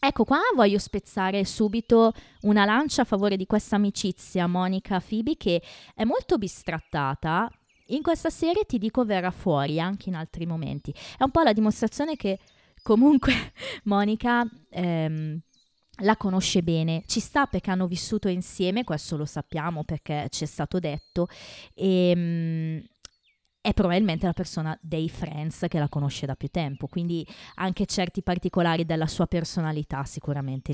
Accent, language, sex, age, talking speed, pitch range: native, Italian, female, 20-39, 150 wpm, 155-205 Hz